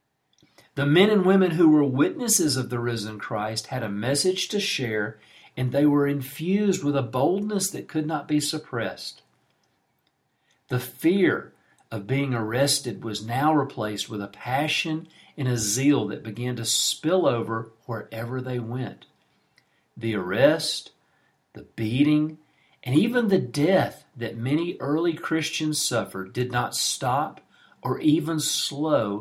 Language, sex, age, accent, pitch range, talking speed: English, male, 50-69, American, 115-155 Hz, 140 wpm